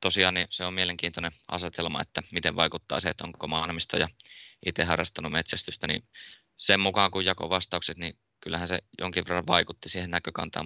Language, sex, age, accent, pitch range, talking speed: Finnish, male, 20-39, native, 80-100 Hz, 170 wpm